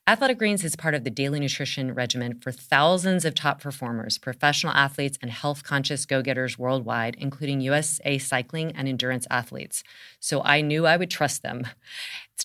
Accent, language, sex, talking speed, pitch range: American, English, female, 165 wpm, 130-155 Hz